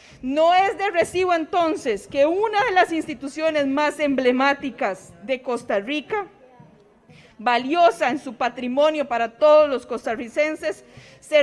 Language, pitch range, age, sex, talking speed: Spanish, 255-320 Hz, 40-59, female, 125 wpm